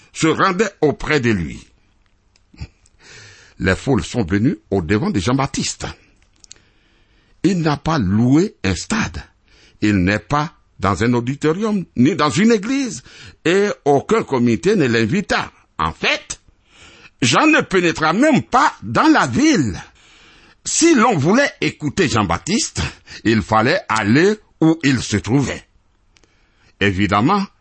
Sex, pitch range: male, 95-140 Hz